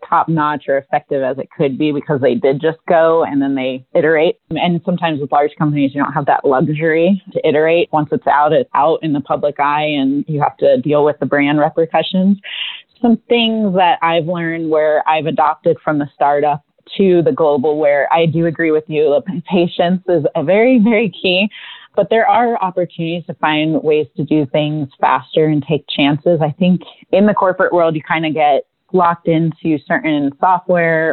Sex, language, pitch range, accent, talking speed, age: female, English, 150-175 Hz, American, 195 wpm, 30-49